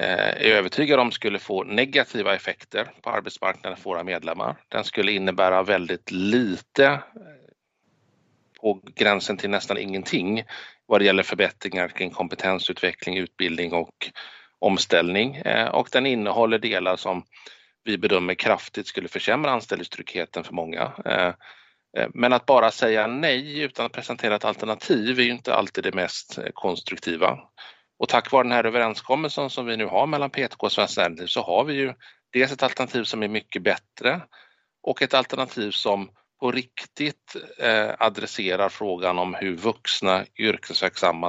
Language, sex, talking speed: Swedish, male, 150 wpm